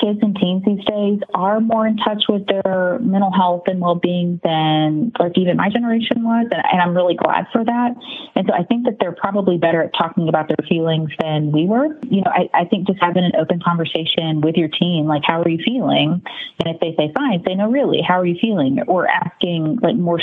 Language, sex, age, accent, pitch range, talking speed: English, female, 30-49, American, 160-200 Hz, 230 wpm